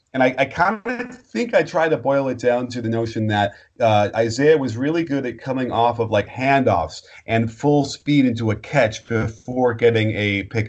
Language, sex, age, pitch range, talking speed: English, male, 30-49, 100-120 Hz, 200 wpm